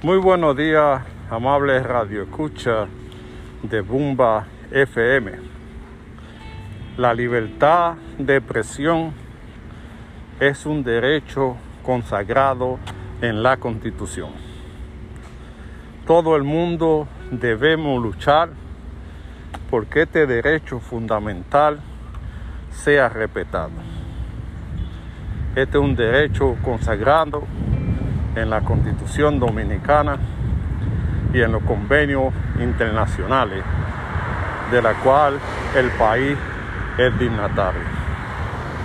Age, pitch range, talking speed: 50-69, 95-140 Hz, 80 wpm